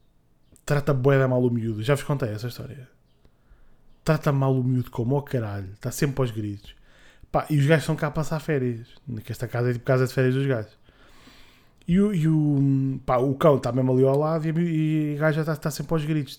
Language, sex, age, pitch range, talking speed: Portuguese, male, 20-39, 125-155 Hz, 230 wpm